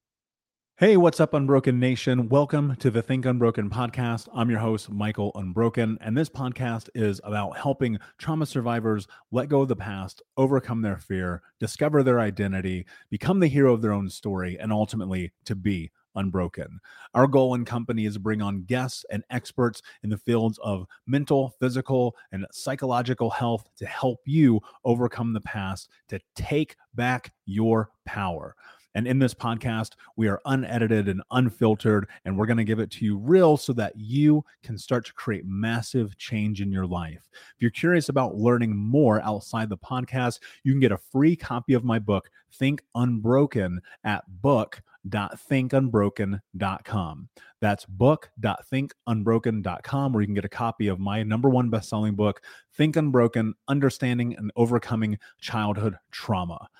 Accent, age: American, 30-49